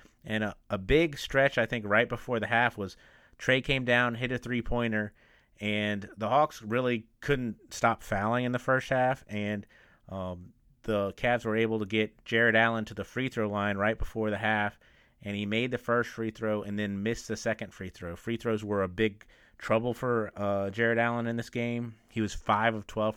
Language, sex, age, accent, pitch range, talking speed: English, male, 30-49, American, 105-115 Hz, 195 wpm